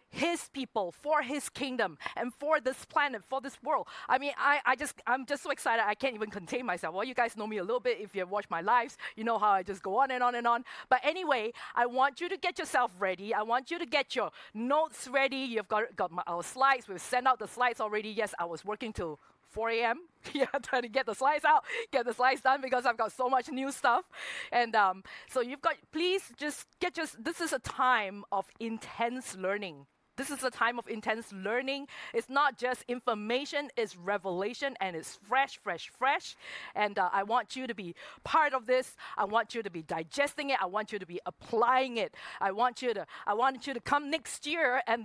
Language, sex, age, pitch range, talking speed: English, female, 20-39, 215-275 Hz, 235 wpm